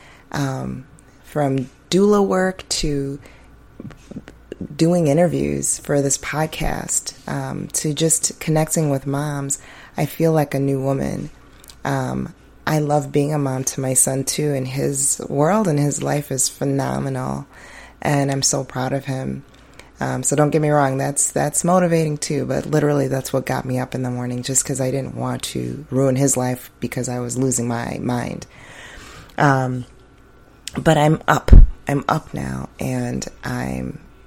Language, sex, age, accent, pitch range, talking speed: English, female, 30-49, American, 125-150 Hz, 160 wpm